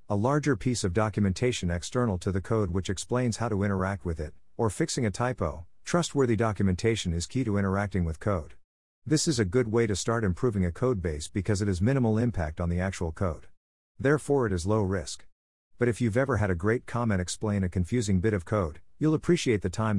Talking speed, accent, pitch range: 215 wpm, American, 90-115 Hz